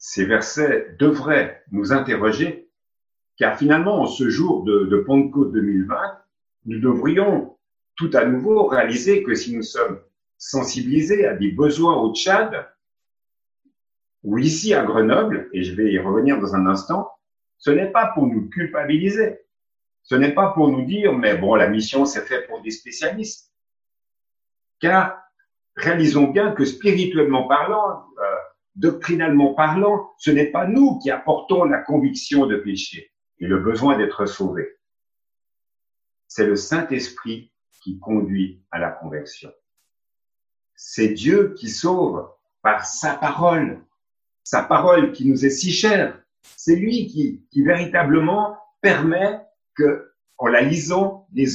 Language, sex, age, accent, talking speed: French, male, 50-69, French, 140 wpm